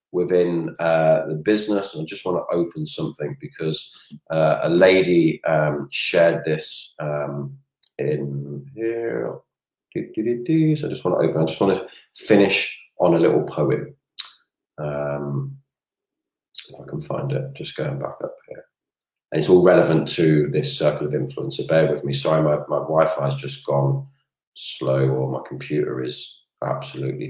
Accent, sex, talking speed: British, male, 165 wpm